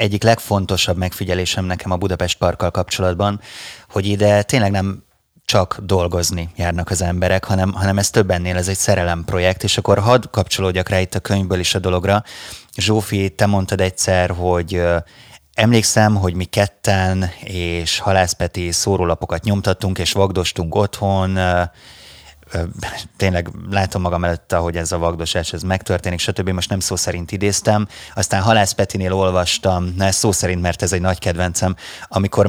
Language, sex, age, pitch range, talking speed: Hungarian, male, 30-49, 90-100 Hz, 150 wpm